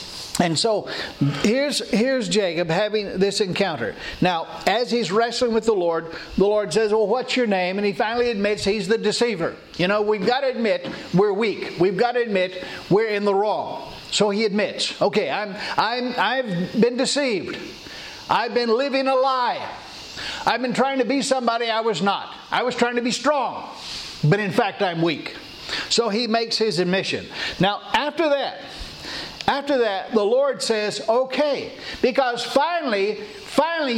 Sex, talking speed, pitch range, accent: male, 165 wpm, 200-250 Hz, American